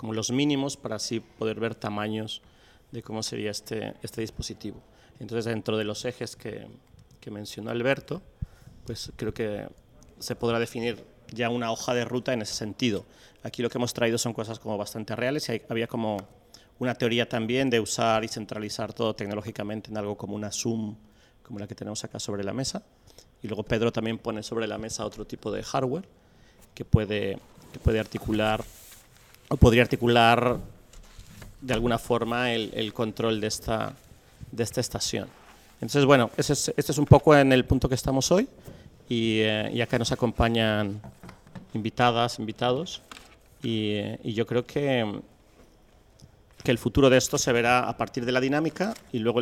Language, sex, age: Spanish, male, 30-49